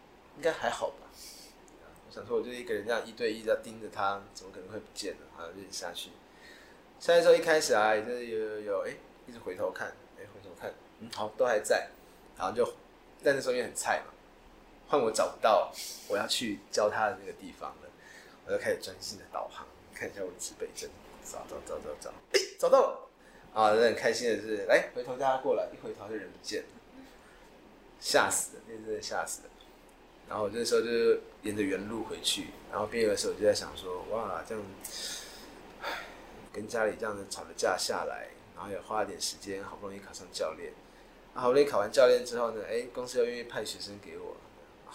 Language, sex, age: Chinese, male, 20-39